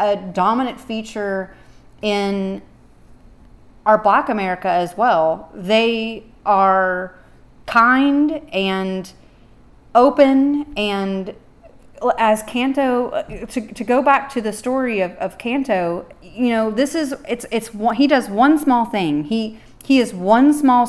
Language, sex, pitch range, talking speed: English, female, 195-245 Hz, 125 wpm